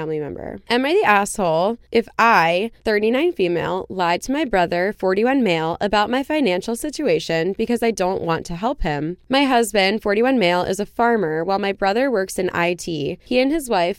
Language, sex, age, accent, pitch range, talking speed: English, female, 20-39, American, 180-230 Hz, 185 wpm